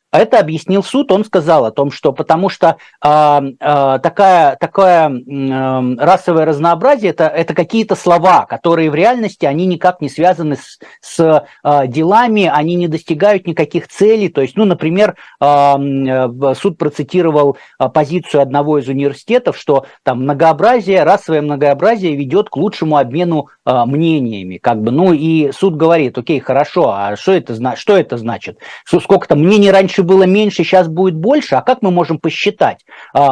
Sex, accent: male, native